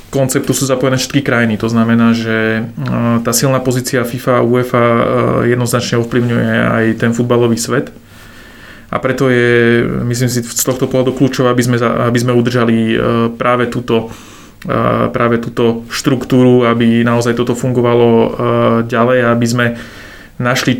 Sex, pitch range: male, 115-125 Hz